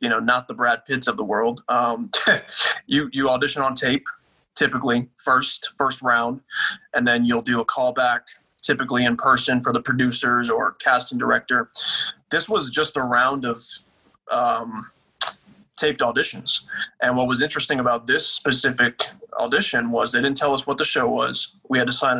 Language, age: English, 20-39